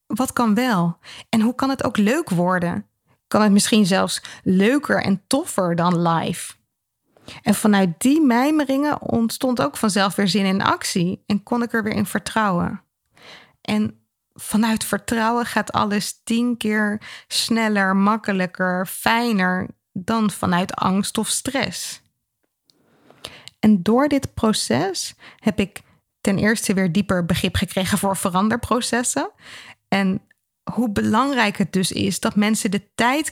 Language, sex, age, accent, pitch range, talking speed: Dutch, female, 20-39, Dutch, 195-235 Hz, 135 wpm